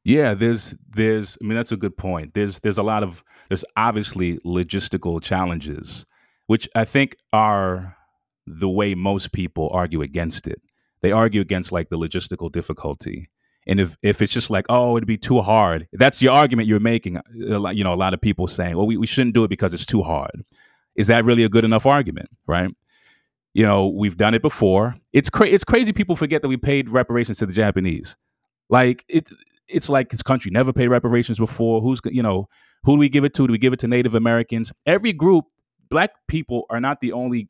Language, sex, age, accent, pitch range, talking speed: English, male, 30-49, American, 95-125 Hz, 210 wpm